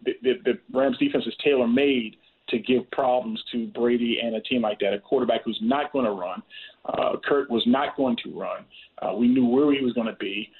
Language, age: English, 40-59